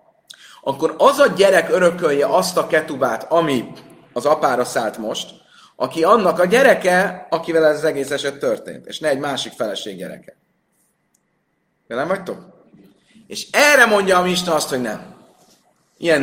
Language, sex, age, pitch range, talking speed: Hungarian, male, 30-49, 130-180 Hz, 150 wpm